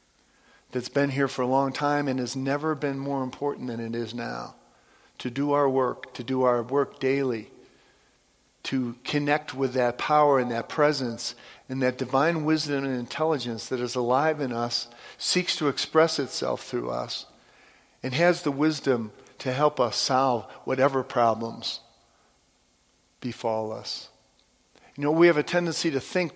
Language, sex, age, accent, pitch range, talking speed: English, male, 50-69, American, 120-140 Hz, 160 wpm